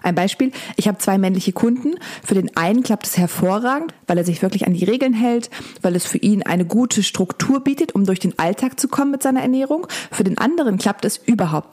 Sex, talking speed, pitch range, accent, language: female, 225 wpm, 180-235 Hz, German, German